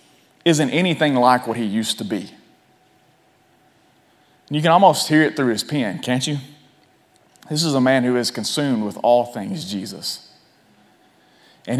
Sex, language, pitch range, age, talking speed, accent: male, English, 130-170 Hz, 30-49, 155 wpm, American